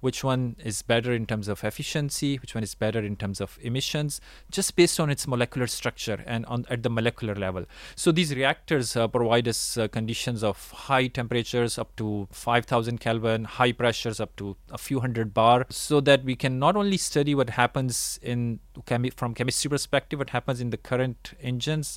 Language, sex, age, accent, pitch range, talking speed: English, male, 30-49, Indian, 110-130 Hz, 190 wpm